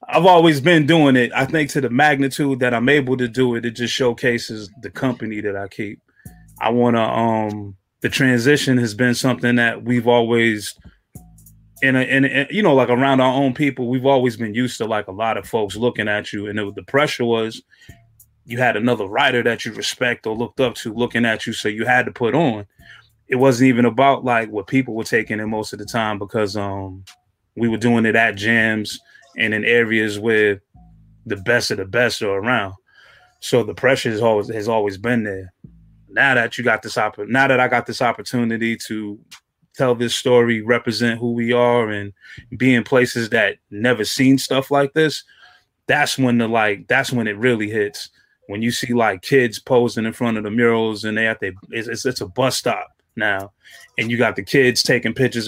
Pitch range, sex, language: 110-130 Hz, male, English